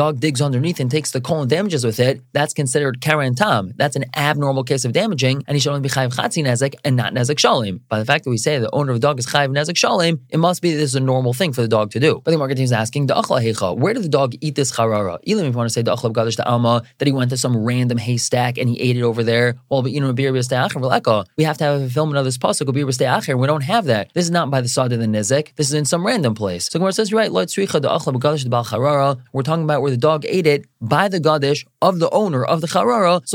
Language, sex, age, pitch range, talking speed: English, male, 20-39, 125-155 Hz, 265 wpm